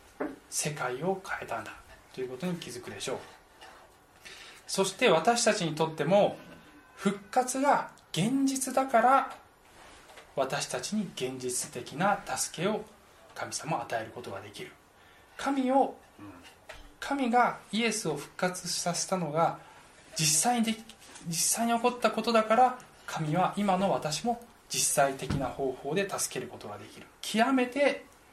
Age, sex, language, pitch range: 20-39, male, Japanese, 145-210 Hz